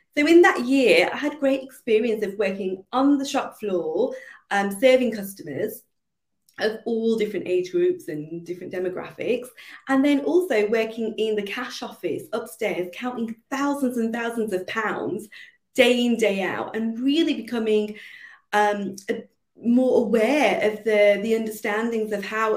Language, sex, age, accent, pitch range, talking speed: English, female, 30-49, British, 205-270 Hz, 150 wpm